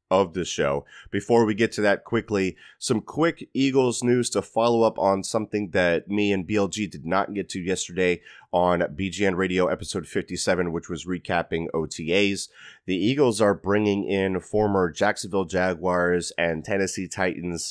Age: 30-49